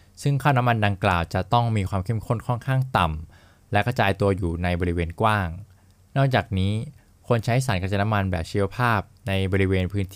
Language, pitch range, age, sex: Thai, 95-115 Hz, 20-39, male